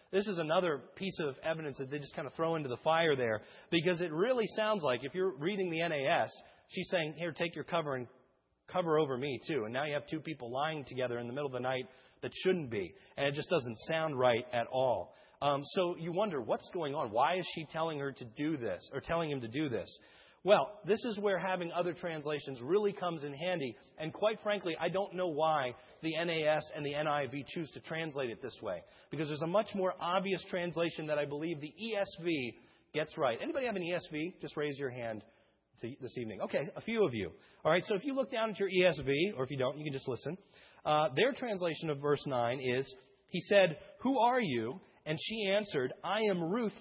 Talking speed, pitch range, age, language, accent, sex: 225 wpm, 145-185 Hz, 40-59, English, American, male